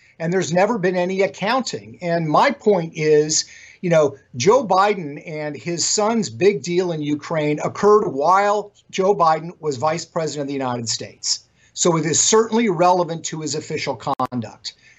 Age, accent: 50-69, American